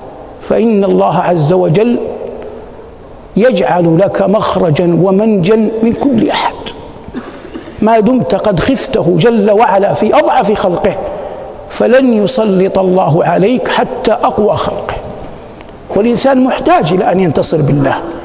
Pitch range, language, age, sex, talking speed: 195-255 Hz, Arabic, 60-79, male, 110 wpm